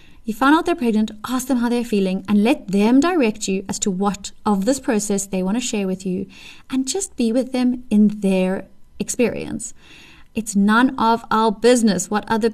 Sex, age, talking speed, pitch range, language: female, 20-39, 200 wpm, 205-255 Hz, English